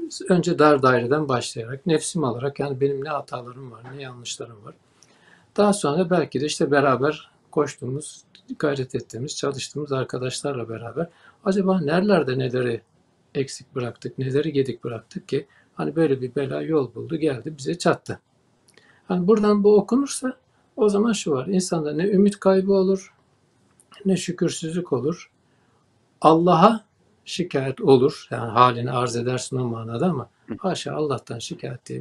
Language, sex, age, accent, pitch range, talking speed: Turkish, male, 60-79, native, 130-180 Hz, 140 wpm